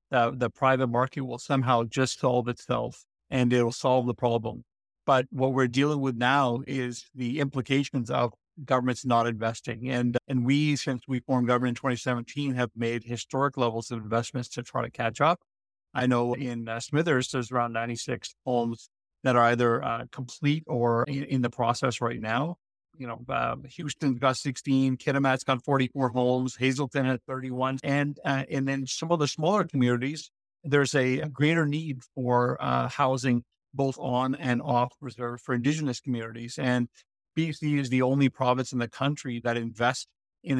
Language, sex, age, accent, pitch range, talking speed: English, male, 50-69, American, 120-135 Hz, 175 wpm